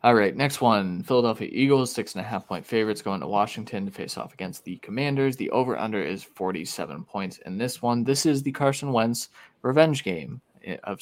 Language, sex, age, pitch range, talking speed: English, male, 20-39, 100-125 Hz, 200 wpm